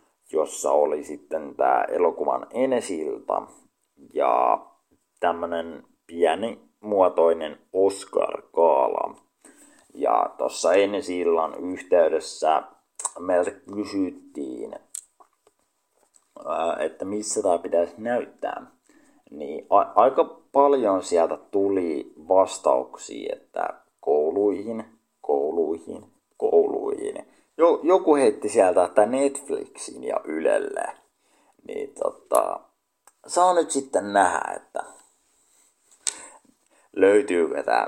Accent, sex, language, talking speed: native, male, Finnish, 75 wpm